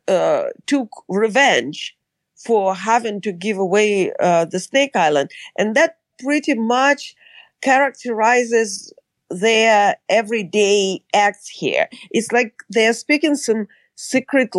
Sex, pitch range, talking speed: female, 195-240 Hz, 110 wpm